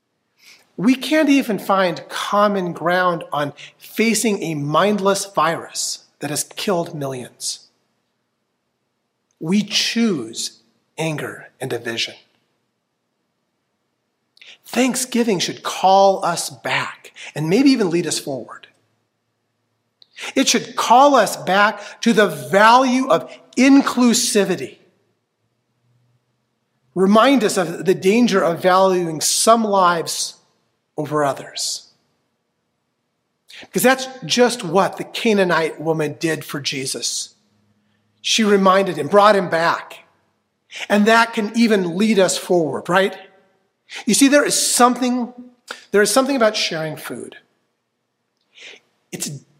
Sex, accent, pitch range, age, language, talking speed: male, American, 150-220 Hz, 40-59, English, 105 wpm